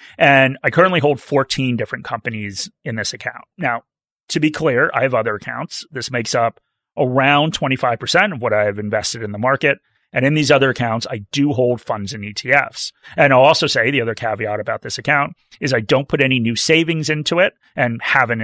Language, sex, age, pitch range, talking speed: English, male, 30-49, 115-145 Hz, 205 wpm